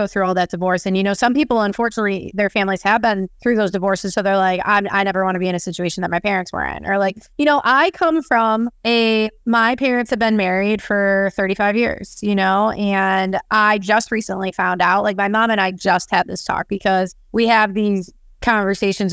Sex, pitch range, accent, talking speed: female, 200-240 Hz, American, 225 wpm